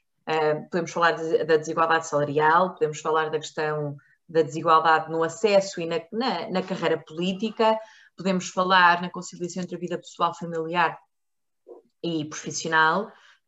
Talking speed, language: 130 wpm, Portuguese